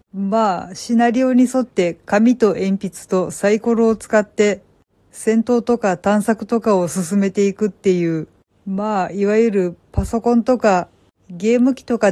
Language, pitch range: Japanese, 185-230 Hz